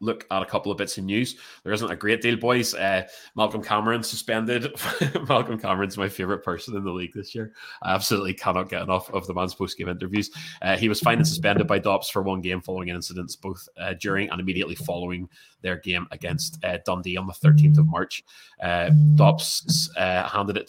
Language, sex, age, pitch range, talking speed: English, male, 20-39, 90-105 Hz, 210 wpm